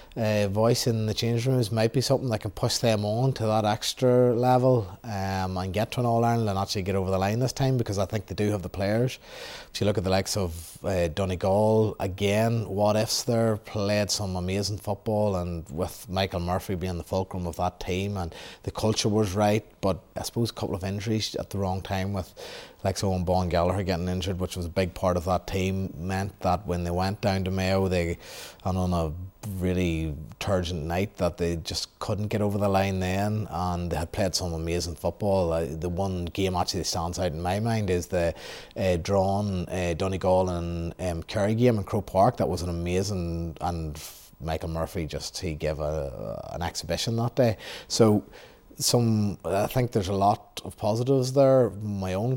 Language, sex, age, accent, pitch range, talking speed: English, male, 30-49, Irish, 90-110 Hz, 205 wpm